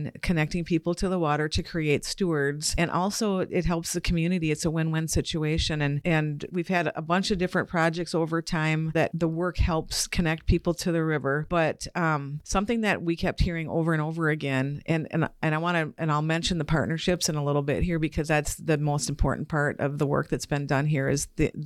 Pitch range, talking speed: 150-175 Hz, 220 wpm